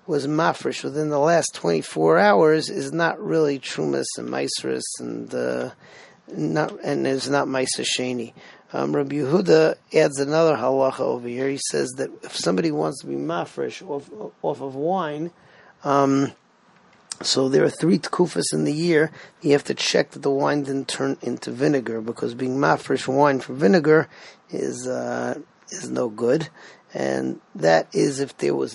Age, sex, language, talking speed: 40-59, male, English, 165 wpm